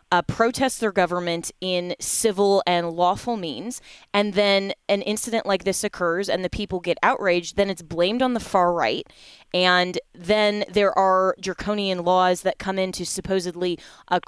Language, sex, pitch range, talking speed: English, female, 180-210 Hz, 170 wpm